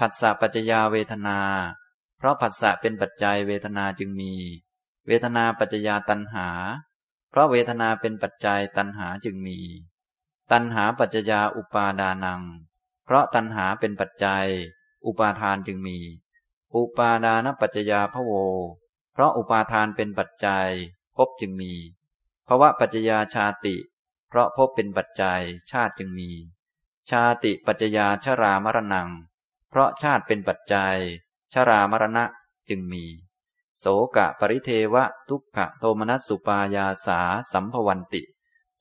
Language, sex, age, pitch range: Thai, male, 20-39, 95-120 Hz